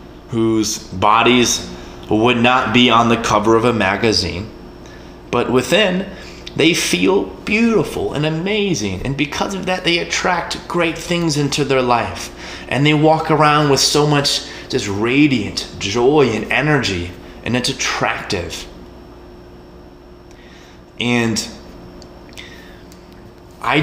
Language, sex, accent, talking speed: English, male, American, 115 wpm